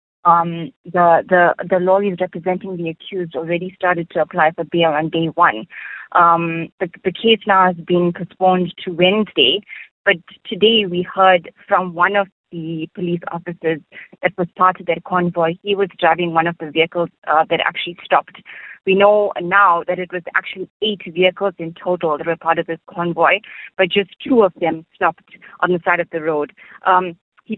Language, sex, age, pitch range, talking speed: English, female, 20-39, 170-195 Hz, 185 wpm